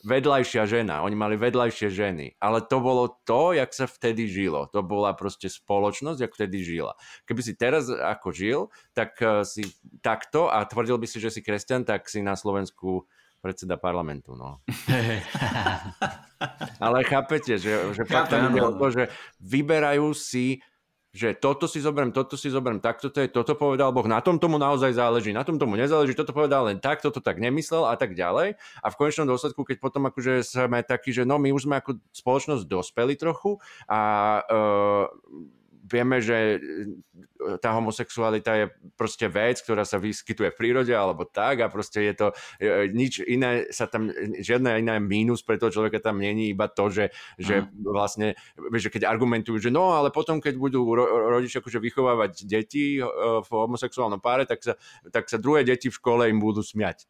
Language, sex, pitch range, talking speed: Slovak, male, 105-135 Hz, 170 wpm